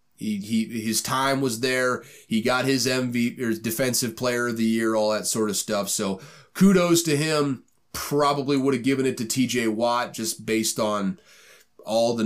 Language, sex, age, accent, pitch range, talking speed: English, male, 30-49, American, 110-145 Hz, 190 wpm